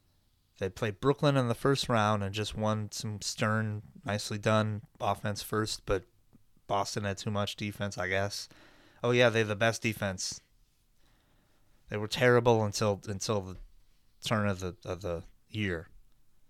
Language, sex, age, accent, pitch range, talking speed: English, male, 30-49, American, 95-120 Hz, 155 wpm